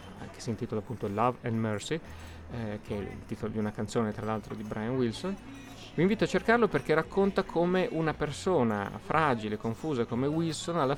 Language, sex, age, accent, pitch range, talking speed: Italian, male, 30-49, native, 110-125 Hz, 185 wpm